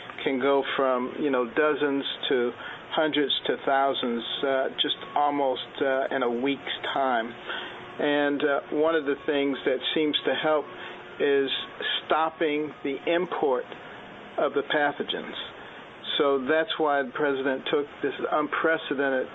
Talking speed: 135 wpm